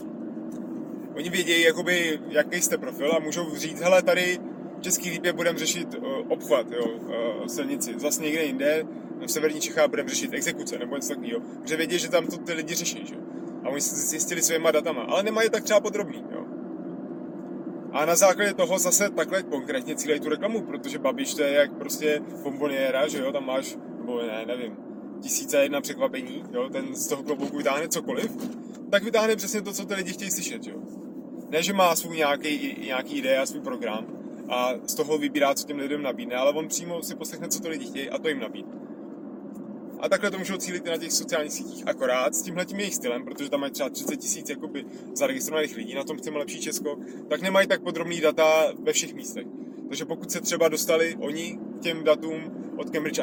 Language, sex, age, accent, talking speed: Czech, male, 20-39, native, 195 wpm